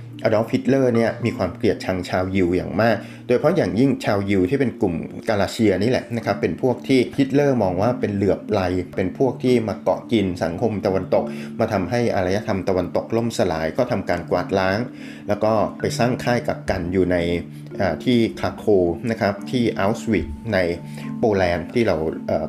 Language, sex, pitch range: Thai, male, 90-120 Hz